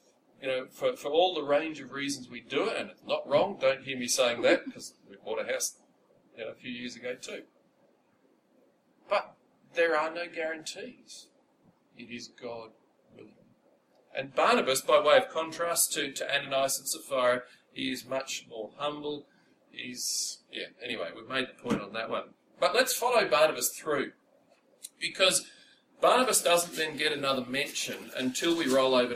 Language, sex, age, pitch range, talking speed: English, male, 40-59, 125-160 Hz, 170 wpm